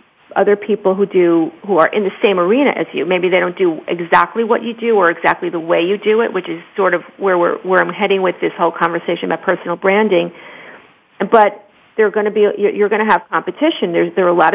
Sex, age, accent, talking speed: female, 40-59, American, 245 wpm